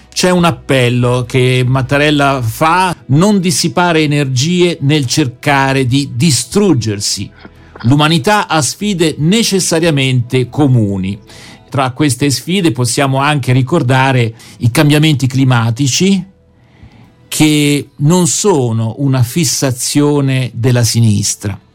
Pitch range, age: 125-160 Hz, 50-69